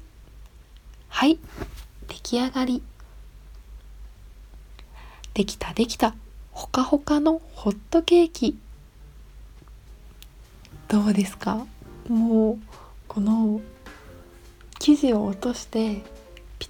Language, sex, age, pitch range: Japanese, female, 20-39, 195-235 Hz